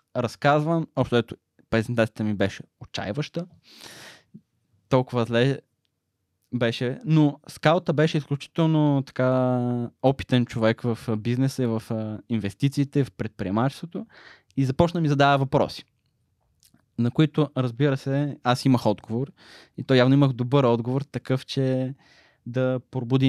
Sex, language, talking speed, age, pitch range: male, Bulgarian, 115 wpm, 20-39, 115-135 Hz